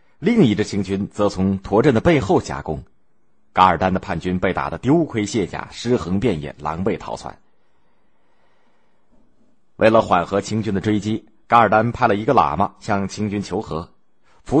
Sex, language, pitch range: male, Japanese, 90-115 Hz